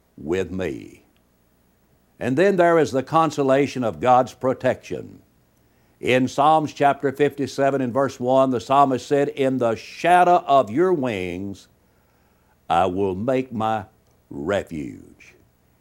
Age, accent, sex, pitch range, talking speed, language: 60-79, American, male, 100-145 Hz, 120 wpm, English